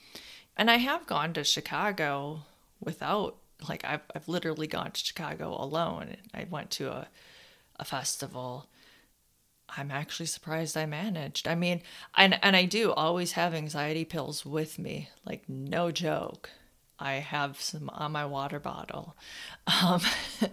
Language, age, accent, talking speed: English, 30-49, American, 145 wpm